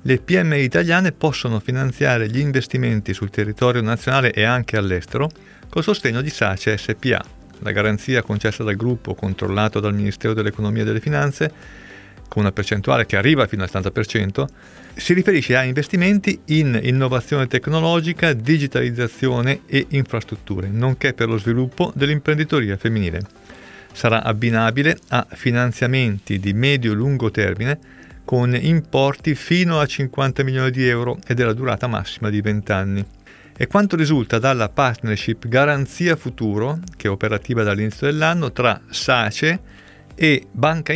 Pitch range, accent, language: 110-140 Hz, native, Italian